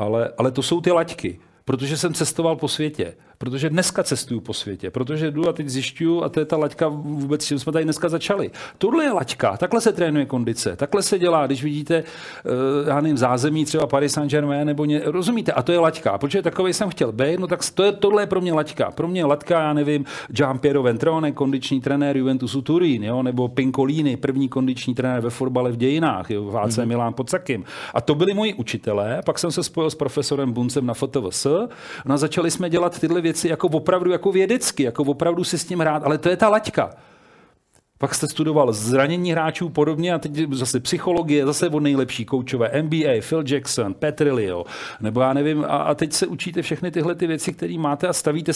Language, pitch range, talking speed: Czech, 135-170 Hz, 210 wpm